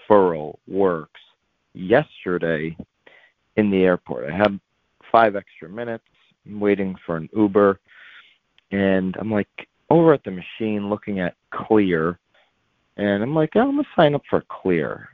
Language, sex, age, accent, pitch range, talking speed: English, male, 30-49, American, 90-110 Hz, 135 wpm